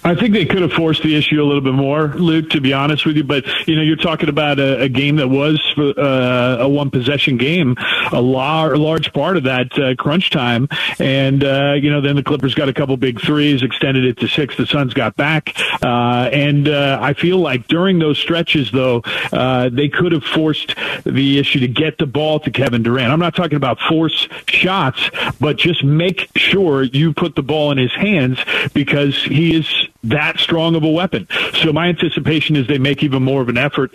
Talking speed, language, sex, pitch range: 215 wpm, English, male, 130-160 Hz